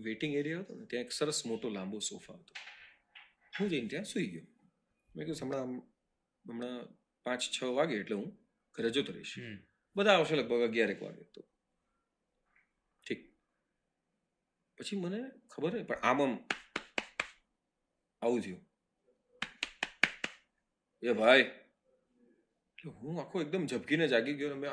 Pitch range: 115-155 Hz